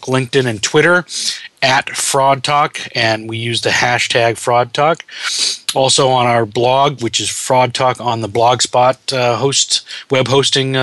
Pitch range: 115-135 Hz